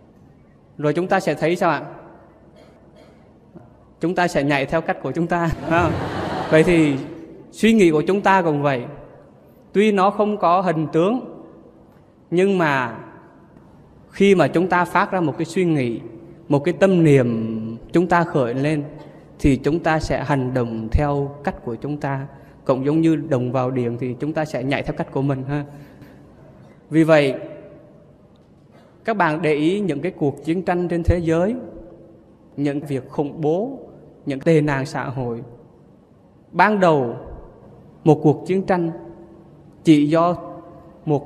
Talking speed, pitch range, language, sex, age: 160 wpm, 140-170 Hz, Vietnamese, male, 20-39